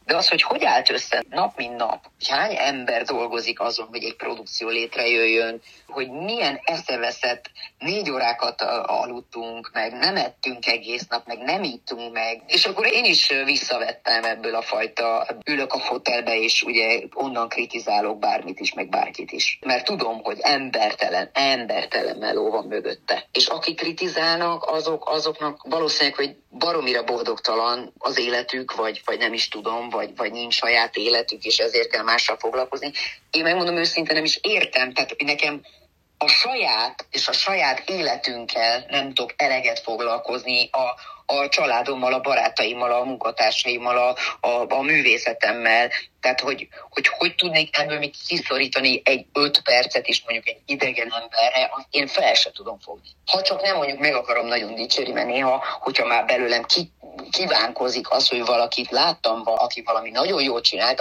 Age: 30-49